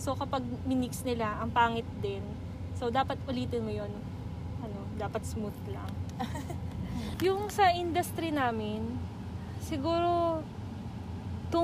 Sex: female